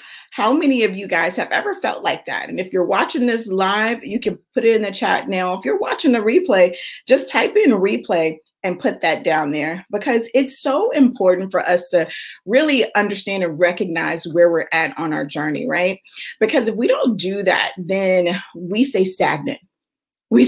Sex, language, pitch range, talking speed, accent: female, English, 180-245 Hz, 195 wpm, American